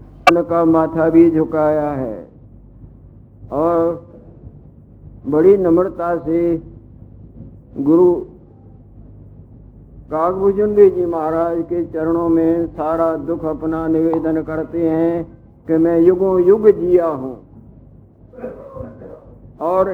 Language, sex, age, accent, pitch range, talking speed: Hindi, male, 60-79, native, 155-190 Hz, 85 wpm